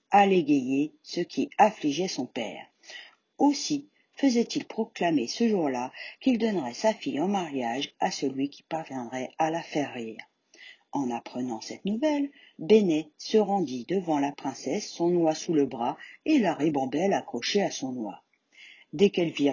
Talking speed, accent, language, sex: 155 wpm, French, French, female